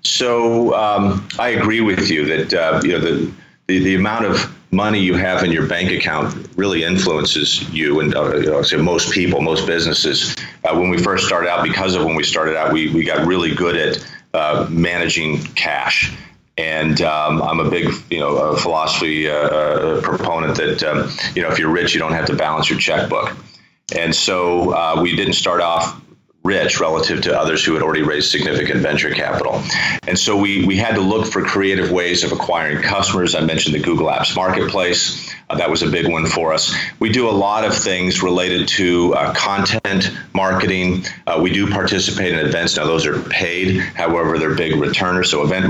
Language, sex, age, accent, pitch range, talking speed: English, male, 40-59, American, 80-95 Hz, 200 wpm